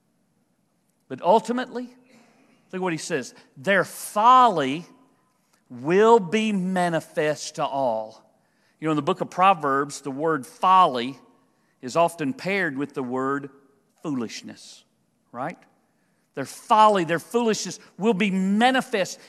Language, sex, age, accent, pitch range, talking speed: English, male, 50-69, American, 180-255 Hz, 120 wpm